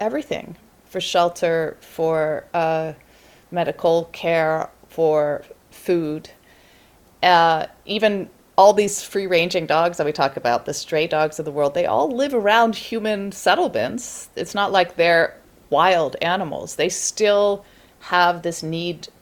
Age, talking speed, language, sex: 30-49, 135 wpm, English, female